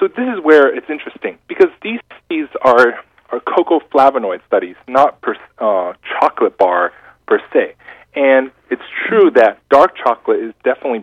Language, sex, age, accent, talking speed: English, male, 40-59, American, 150 wpm